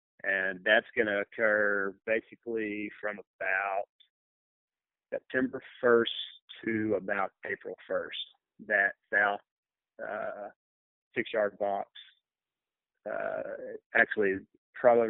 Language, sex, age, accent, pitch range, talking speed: English, male, 30-49, American, 100-120 Hz, 85 wpm